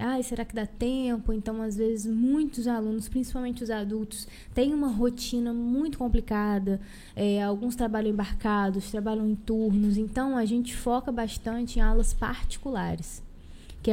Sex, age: female, 20-39